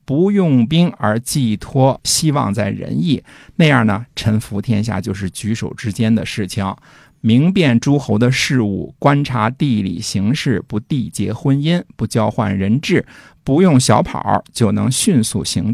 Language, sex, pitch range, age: Chinese, male, 105-145 Hz, 50-69